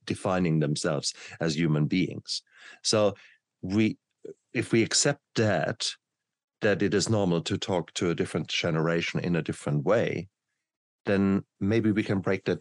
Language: English